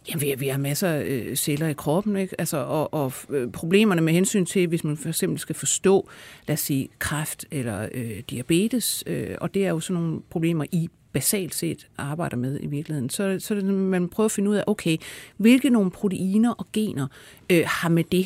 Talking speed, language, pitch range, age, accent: 200 wpm, Danish, 150-205 Hz, 60-79, native